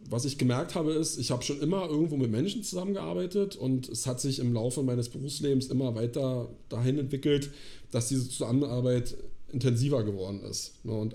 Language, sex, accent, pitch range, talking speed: German, male, German, 120-145 Hz, 170 wpm